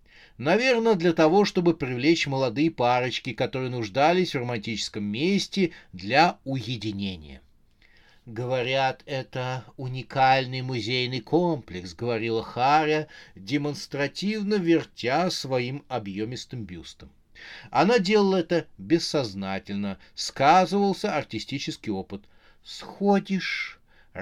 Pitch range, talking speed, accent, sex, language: 110-165 Hz, 85 wpm, native, male, Russian